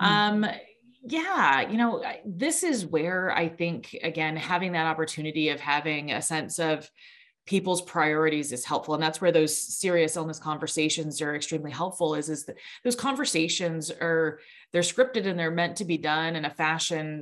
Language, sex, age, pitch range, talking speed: English, female, 30-49, 155-195 Hz, 170 wpm